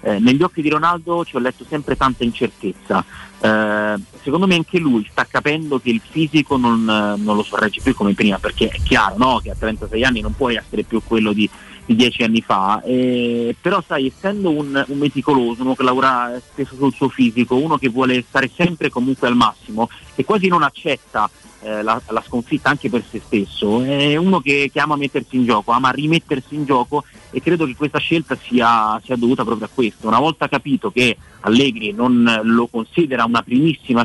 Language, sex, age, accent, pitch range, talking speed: Italian, male, 30-49, native, 110-145 Hz, 200 wpm